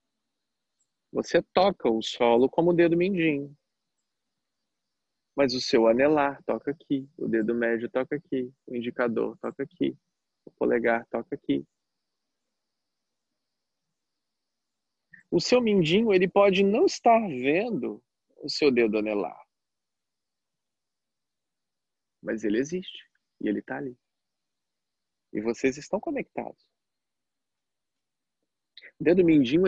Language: Portuguese